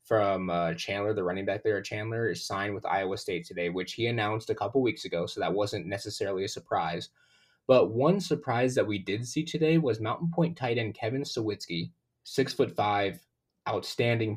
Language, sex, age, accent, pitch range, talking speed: English, male, 20-39, American, 100-130 Hz, 190 wpm